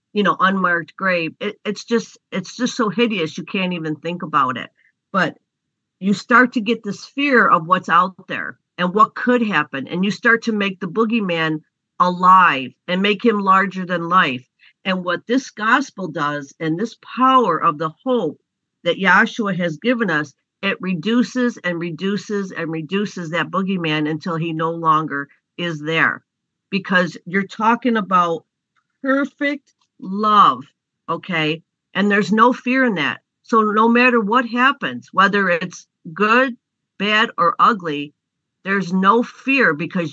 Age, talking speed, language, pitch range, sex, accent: 50-69, 155 wpm, English, 170-225 Hz, female, American